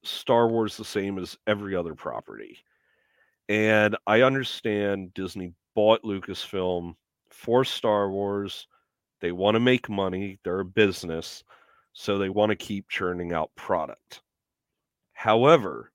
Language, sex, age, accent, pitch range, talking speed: English, male, 30-49, American, 95-115 Hz, 130 wpm